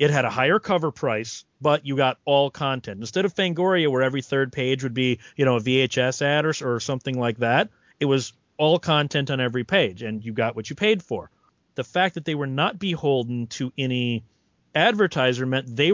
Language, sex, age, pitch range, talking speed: English, male, 30-49, 130-155 Hz, 210 wpm